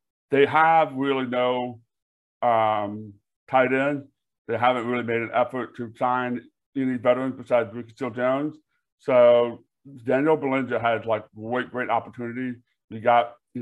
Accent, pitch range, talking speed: American, 115-140 Hz, 140 wpm